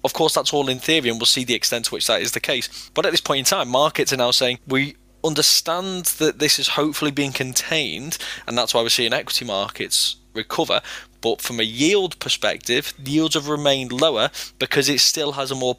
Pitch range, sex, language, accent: 115-135 Hz, male, English, British